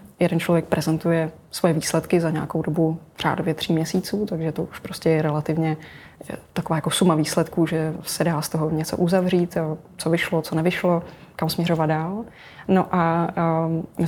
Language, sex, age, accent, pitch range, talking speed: Czech, female, 20-39, native, 160-180 Hz, 160 wpm